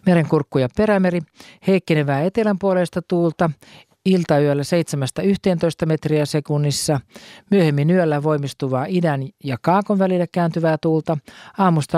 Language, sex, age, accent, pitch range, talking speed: Finnish, male, 50-69, native, 145-185 Hz, 100 wpm